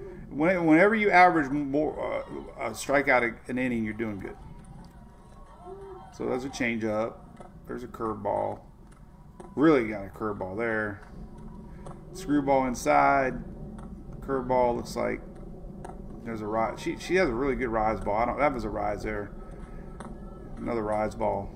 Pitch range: 110-185 Hz